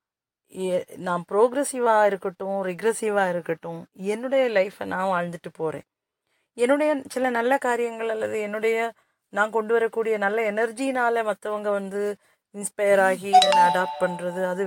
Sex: female